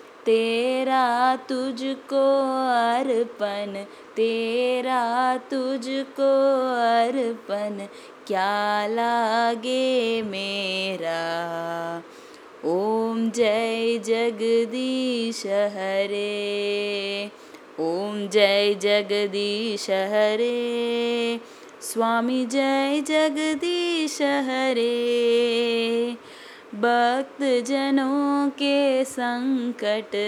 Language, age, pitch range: Tamil, 20-39, 205-260 Hz